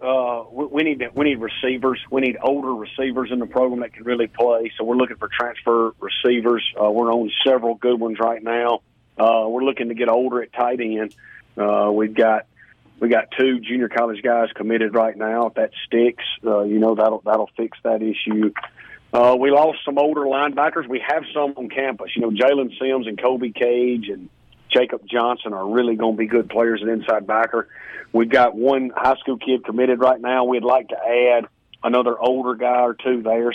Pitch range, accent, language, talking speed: 115-130 Hz, American, English, 205 wpm